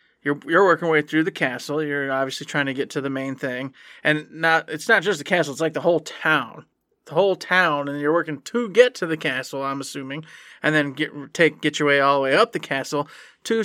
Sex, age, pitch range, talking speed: male, 20-39, 145-180 Hz, 240 wpm